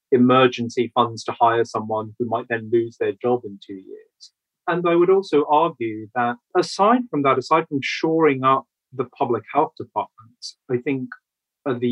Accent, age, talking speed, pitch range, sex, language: British, 30-49, 170 wpm, 115-135 Hz, male, English